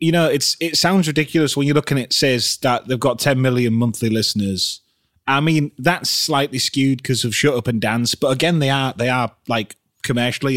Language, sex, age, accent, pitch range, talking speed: English, male, 30-49, British, 110-140 Hz, 215 wpm